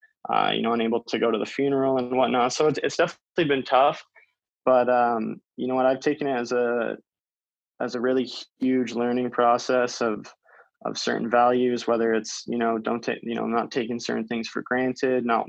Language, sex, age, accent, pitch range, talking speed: English, male, 20-39, American, 115-125 Hz, 200 wpm